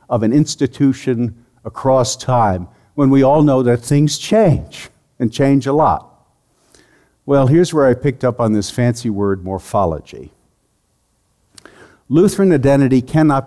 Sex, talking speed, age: male, 135 wpm, 60-79